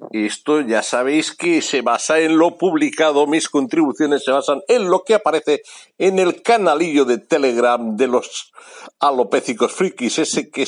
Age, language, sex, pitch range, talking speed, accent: 60-79, Spanish, male, 130-165 Hz, 155 wpm, Spanish